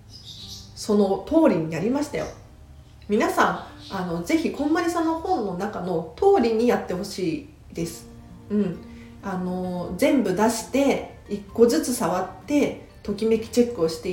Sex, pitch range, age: female, 180-270 Hz, 40-59